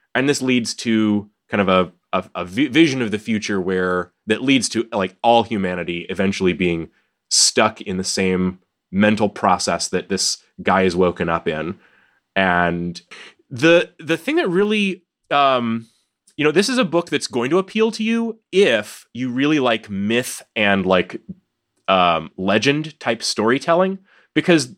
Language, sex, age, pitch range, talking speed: English, male, 30-49, 100-145 Hz, 160 wpm